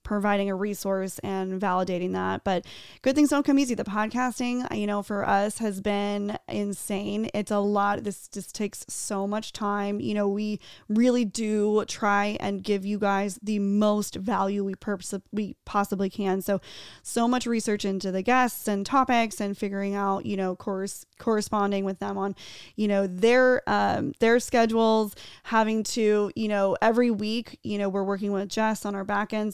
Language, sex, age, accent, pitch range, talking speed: English, female, 20-39, American, 195-220 Hz, 185 wpm